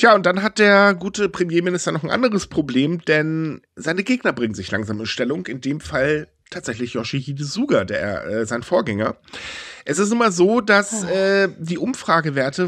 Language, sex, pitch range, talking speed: German, male, 135-190 Hz, 170 wpm